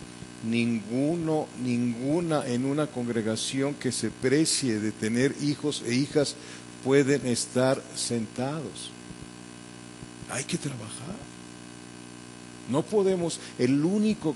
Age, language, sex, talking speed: 50-69, English, male, 95 wpm